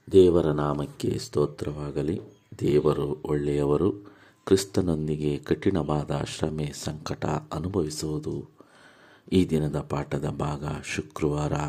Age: 50-69